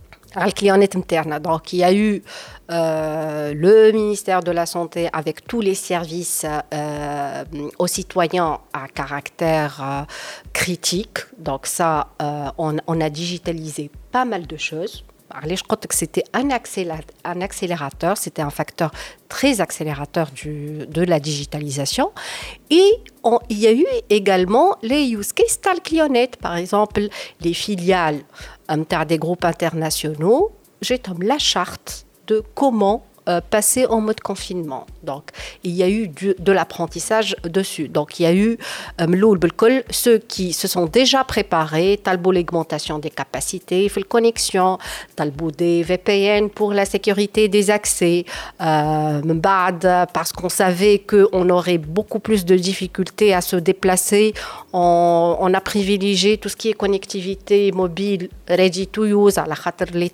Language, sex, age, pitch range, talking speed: Arabic, female, 50-69, 165-205 Hz, 145 wpm